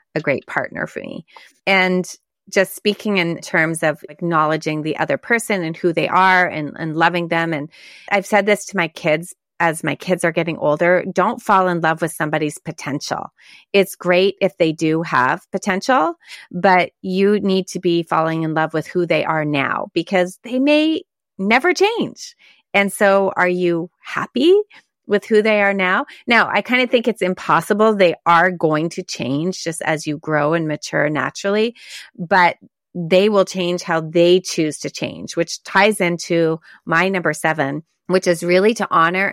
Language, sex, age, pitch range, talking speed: English, female, 30-49, 155-195 Hz, 180 wpm